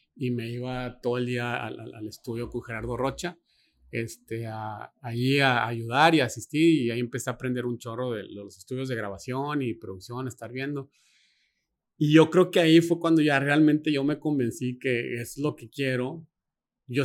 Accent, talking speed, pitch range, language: Mexican, 190 wpm, 115-140 Hz, Spanish